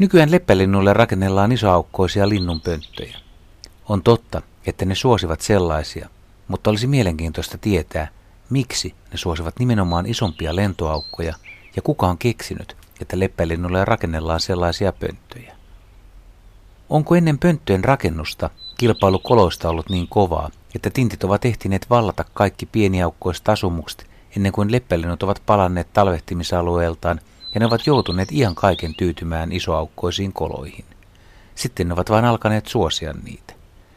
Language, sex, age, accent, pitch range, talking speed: Finnish, male, 60-79, native, 85-105 Hz, 120 wpm